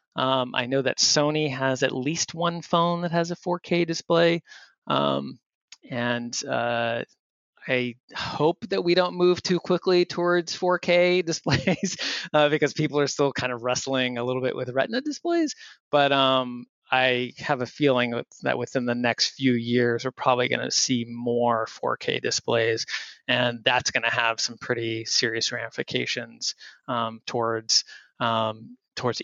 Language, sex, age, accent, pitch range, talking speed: English, male, 20-39, American, 120-150 Hz, 155 wpm